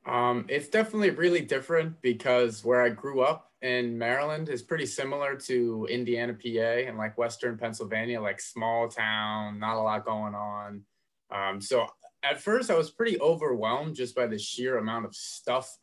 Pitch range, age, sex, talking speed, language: 105-125 Hz, 20-39, male, 170 wpm, English